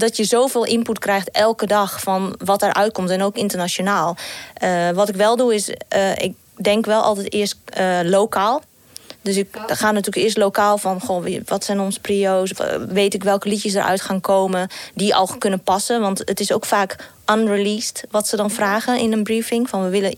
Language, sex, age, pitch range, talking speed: Dutch, female, 20-39, 195-215 Hz, 200 wpm